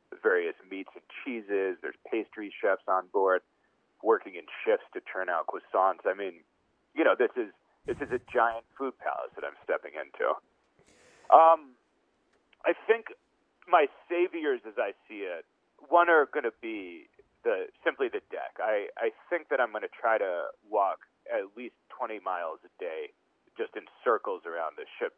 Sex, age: male, 40-59